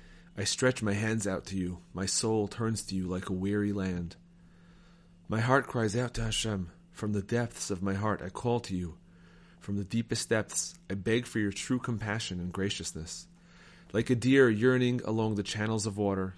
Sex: male